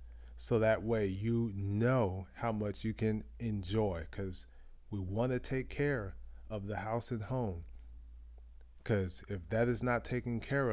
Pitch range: 90-115 Hz